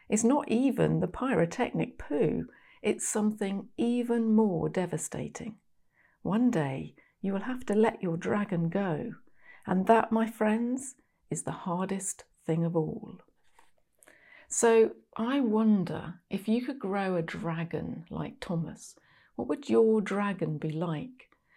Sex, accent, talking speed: female, British, 135 wpm